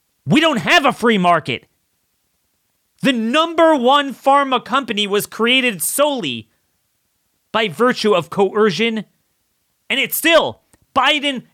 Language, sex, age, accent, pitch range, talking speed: English, male, 30-49, American, 155-250 Hz, 115 wpm